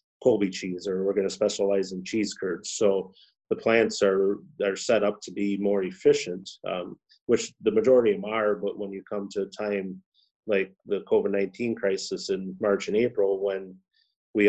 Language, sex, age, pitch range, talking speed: English, male, 30-49, 95-105 Hz, 190 wpm